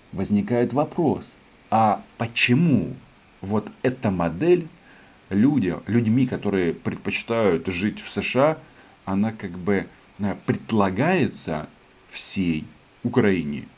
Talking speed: 85 wpm